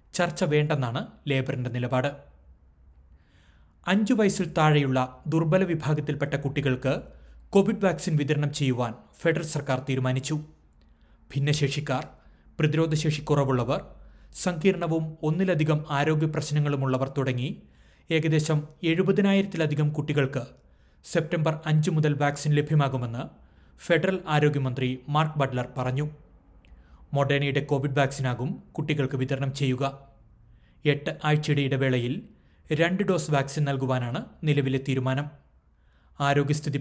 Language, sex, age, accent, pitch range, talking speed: Malayalam, male, 30-49, native, 130-155 Hz, 85 wpm